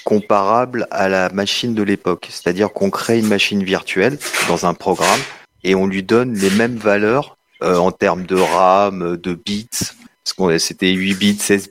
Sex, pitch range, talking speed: male, 100-120 Hz, 175 wpm